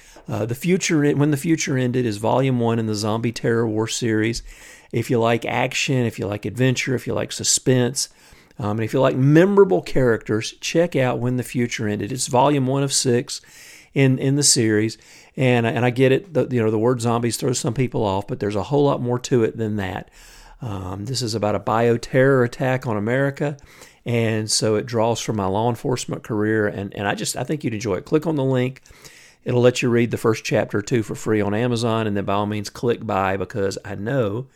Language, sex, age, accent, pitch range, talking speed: English, male, 50-69, American, 110-135 Hz, 225 wpm